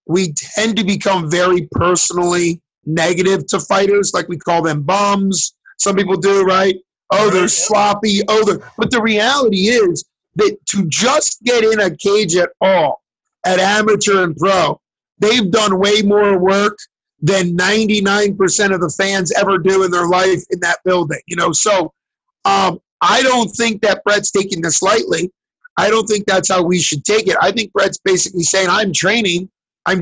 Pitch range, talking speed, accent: 180-210 Hz, 175 wpm, American